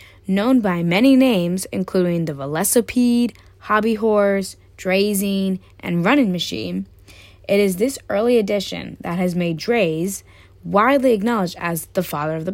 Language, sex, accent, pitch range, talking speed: English, female, American, 165-215 Hz, 140 wpm